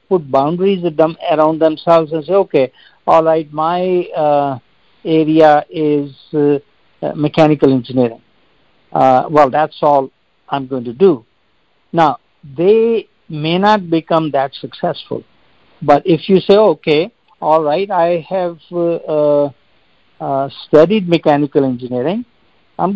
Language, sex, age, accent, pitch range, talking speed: English, male, 60-79, Indian, 145-175 Hz, 125 wpm